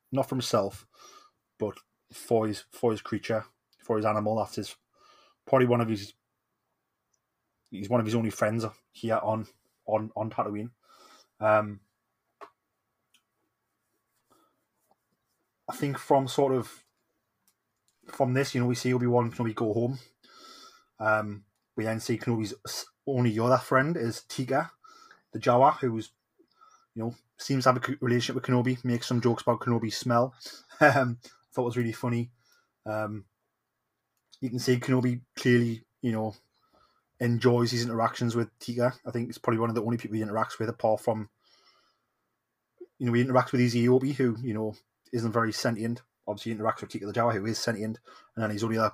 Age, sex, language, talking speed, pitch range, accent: 20-39, male, English, 165 wpm, 110-125 Hz, British